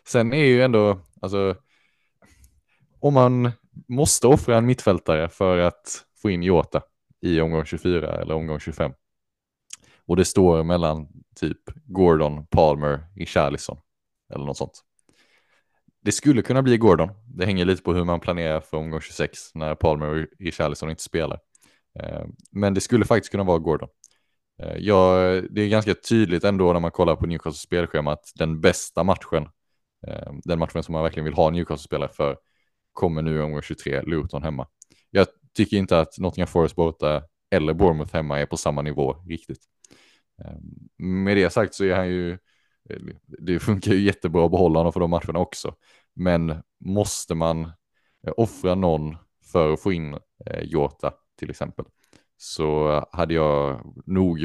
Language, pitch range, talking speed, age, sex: Swedish, 80-95 Hz, 160 wpm, 20-39, male